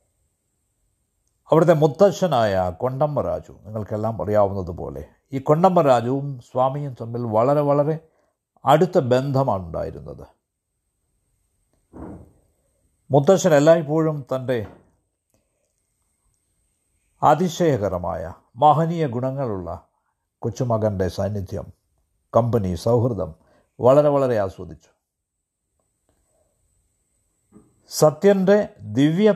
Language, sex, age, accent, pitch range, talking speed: Malayalam, male, 50-69, native, 95-150 Hz, 60 wpm